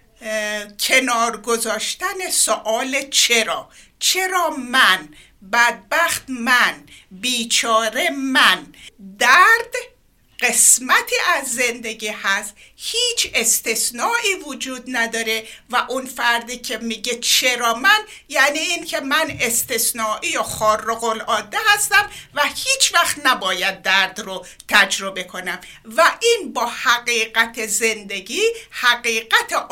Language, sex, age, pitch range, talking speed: Persian, female, 60-79, 220-325 Hz, 95 wpm